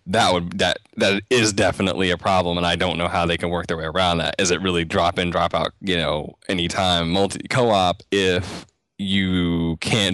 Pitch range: 85-100 Hz